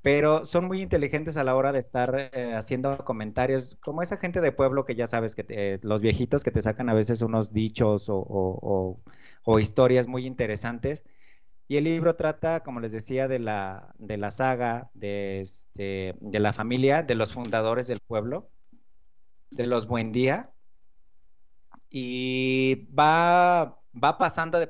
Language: Spanish